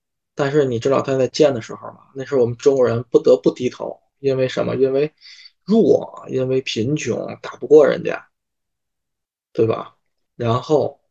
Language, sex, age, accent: Chinese, male, 20-39, native